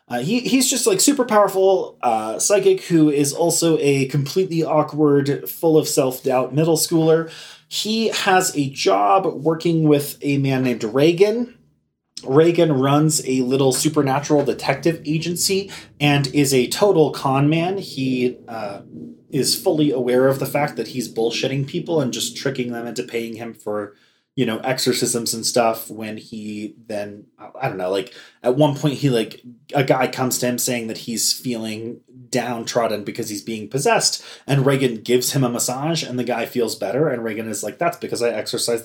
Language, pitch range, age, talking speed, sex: English, 120-155 Hz, 30-49, 175 wpm, male